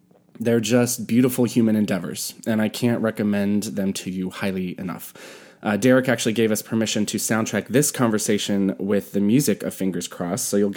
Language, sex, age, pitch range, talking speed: English, male, 20-39, 100-120 Hz, 180 wpm